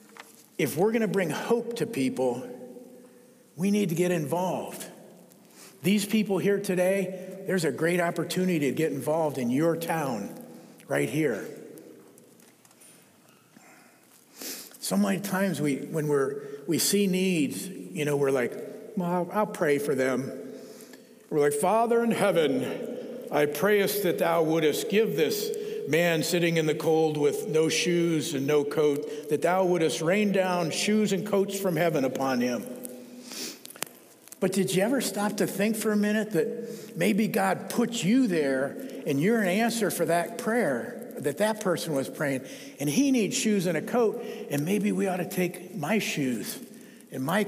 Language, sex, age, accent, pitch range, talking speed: English, male, 50-69, American, 160-225 Hz, 160 wpm